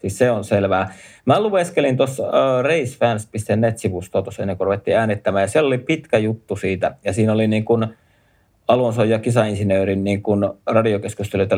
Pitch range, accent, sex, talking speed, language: 105-130 Hz, native, male, 155 wpm, Finnish